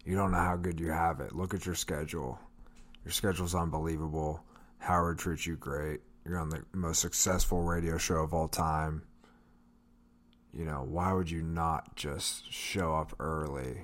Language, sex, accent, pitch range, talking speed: English, male, American, 75-95 Hz, 170 wpm